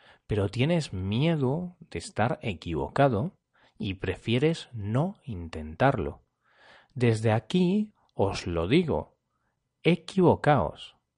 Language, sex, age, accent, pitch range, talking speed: Spanish, male, 40-59, Spanish, 95-150 Hz, 85 wpm